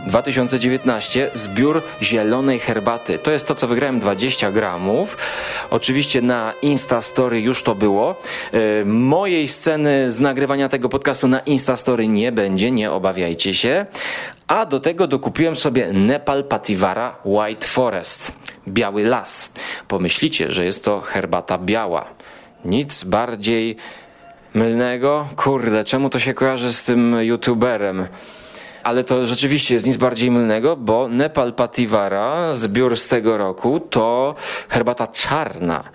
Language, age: Polish, 30-49